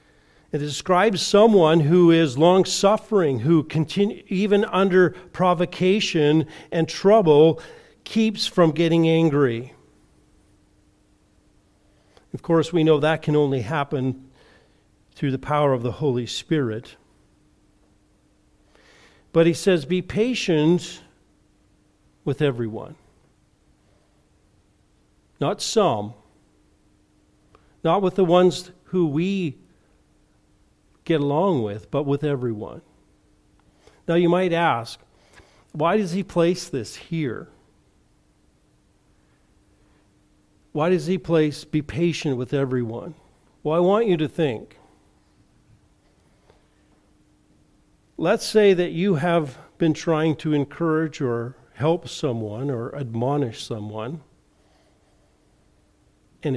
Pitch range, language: 140-180 Hz, English